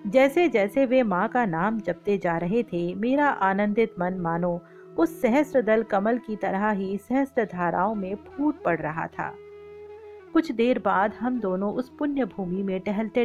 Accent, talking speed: native, 170 wpm